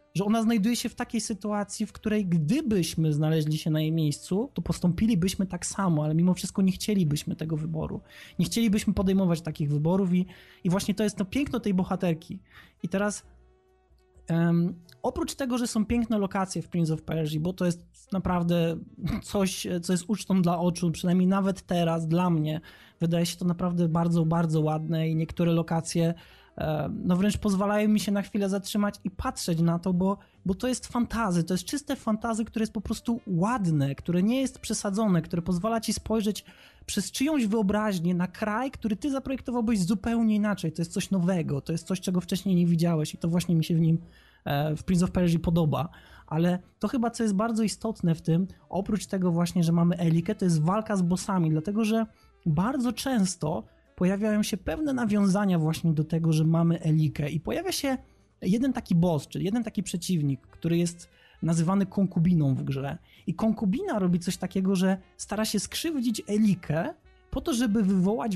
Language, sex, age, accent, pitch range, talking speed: Polish, male, 20-39, native, 170-215 Hz, 185 wpm